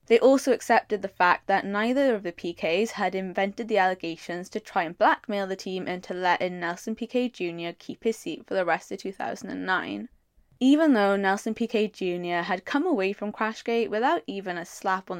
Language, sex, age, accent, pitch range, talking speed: English, female, 20-39, British, 185-230 Hz, 190 wpm